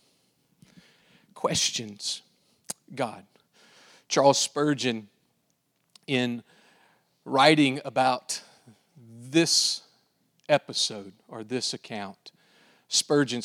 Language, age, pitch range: English, 40-59, 155-245 Hz